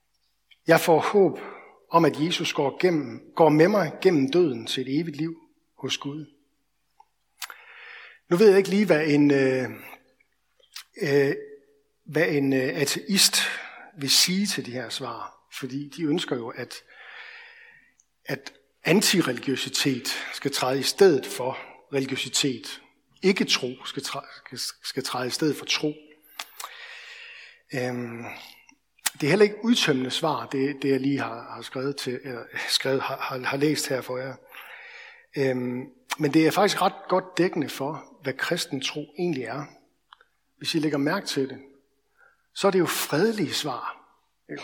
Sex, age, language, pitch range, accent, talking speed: male, 60-79, Danish, 135-200 Hz, native, 135 wpm